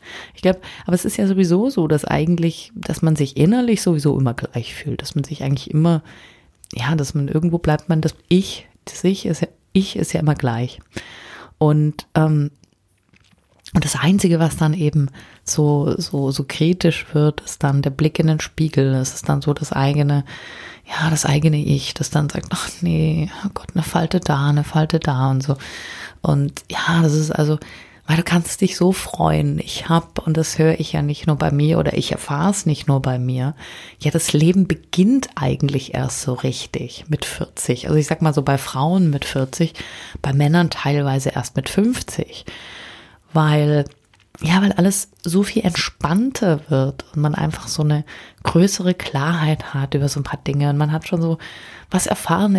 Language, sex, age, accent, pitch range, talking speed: German, female, 30-49, German, 140-170 Hz, 190 wpm